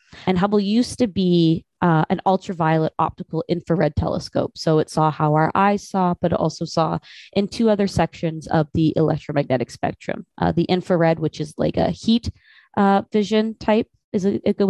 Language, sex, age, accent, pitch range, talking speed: English, female, 20-39, American, 155-185 Hz, 180 wpm